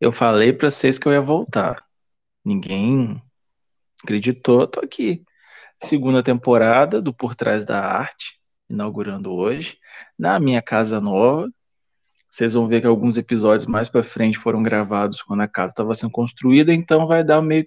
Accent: Brazilian